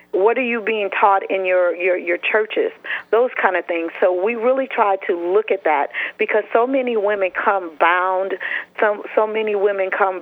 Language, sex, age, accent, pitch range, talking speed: English, female, 40-59, American, 180-220 Hz, 195 wpm